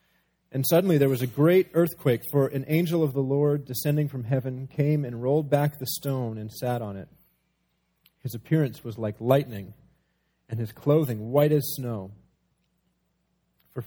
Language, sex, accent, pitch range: English, male, American, 120-160 Hz